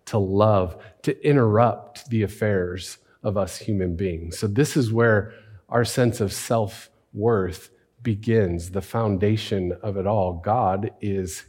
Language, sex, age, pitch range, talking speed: English, male, 40-59, 105-140 Hz, 135 wpm